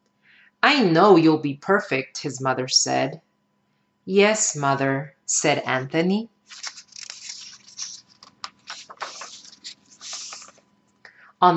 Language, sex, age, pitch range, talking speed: English, female, 30-49, 150-215 Hz, 65 wpm